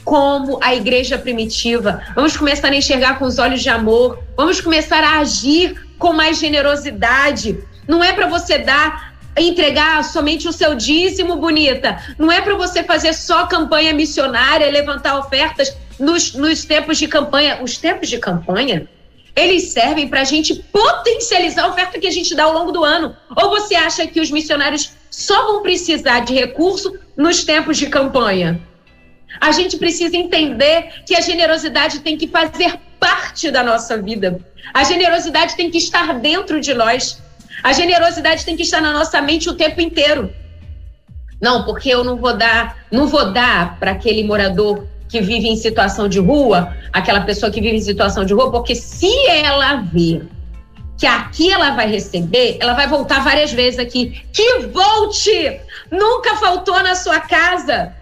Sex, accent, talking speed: female, Brazilian, 170 wpm